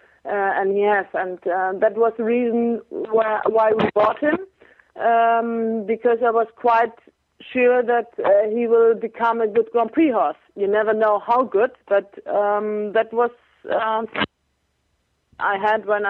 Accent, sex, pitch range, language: German, female, 220-255 Hz, English